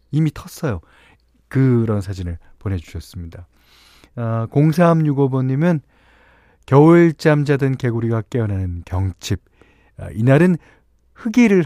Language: Korean